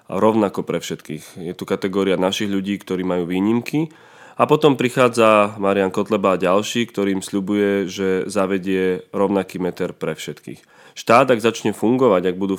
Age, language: 20-39, Slovak